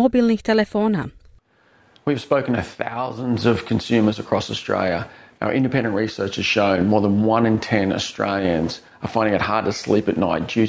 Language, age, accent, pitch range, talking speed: Croatian, 30-49, Australian, 145-225 Hz, 155 wpm